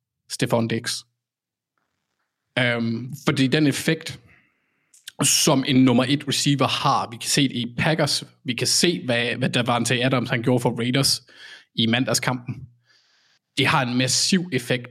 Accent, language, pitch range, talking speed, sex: native, Danish, 120-145 Hz, 145 wpm, male